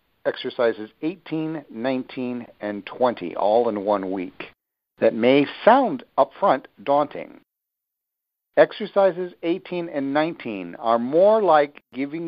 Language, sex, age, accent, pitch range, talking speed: English, male, 50-69, American, 115-160 Hz, 110 wpm